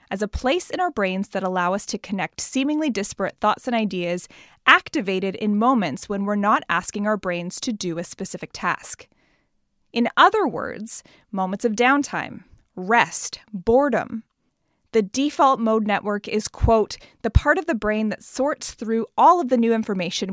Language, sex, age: English, female, 20-39